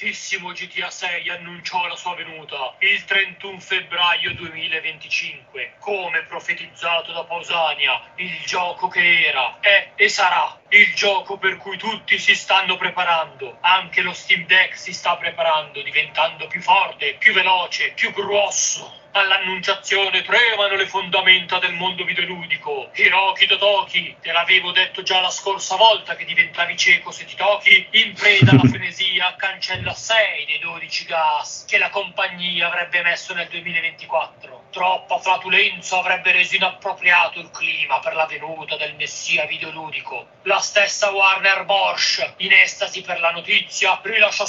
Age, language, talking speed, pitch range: 40-59, Italian, 140 wpm, 175-195 Hz